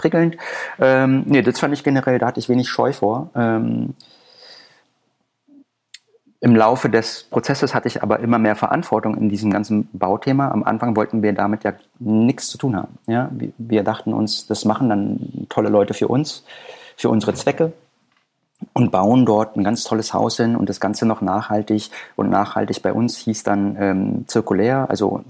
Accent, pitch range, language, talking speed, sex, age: German, 100-120 Hz, German, 170 wpm, male, 30-49